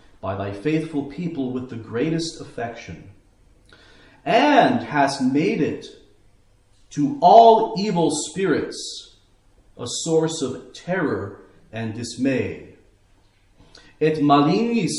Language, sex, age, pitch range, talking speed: English, male, 40-59, 100-150 Hz, 95 wpm